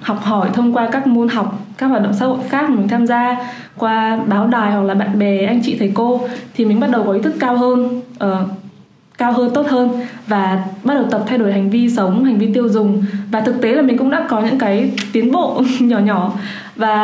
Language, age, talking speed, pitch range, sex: Vietnamese, 20-39, 245 wpm, 205-245 Hz, female